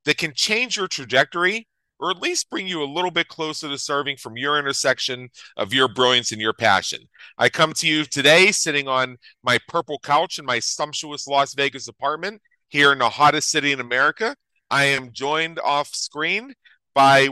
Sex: male